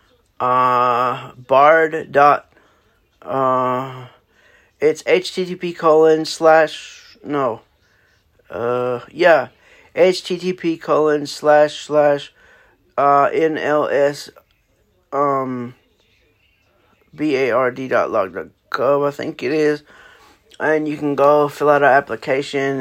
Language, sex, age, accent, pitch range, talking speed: English, male, 50-69, American, 130-155 Hz, 80 wpm